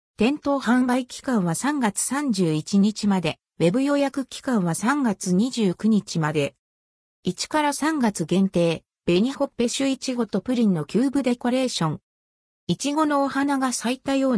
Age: 50-69